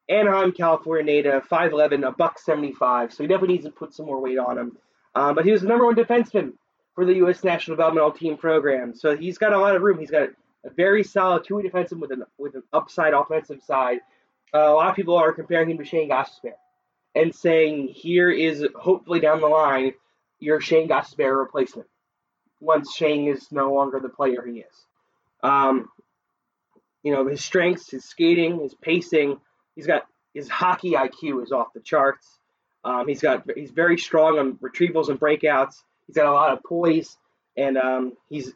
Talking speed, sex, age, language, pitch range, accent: 195 wpm, male, 20-39, English, 140-170 Hz, American